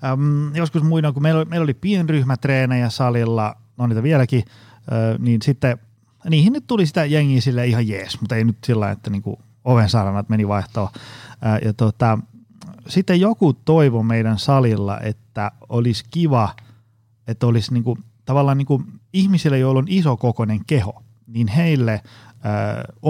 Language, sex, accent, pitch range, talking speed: Finnish, male, native, 110-140 Hz, 155 wpm